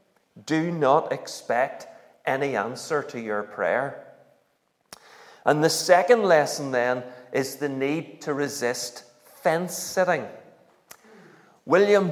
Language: English